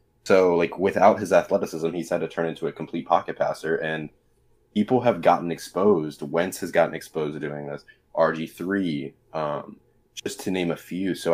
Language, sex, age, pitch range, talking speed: English, male, 20-39, 80-95 Hz, 180 wpm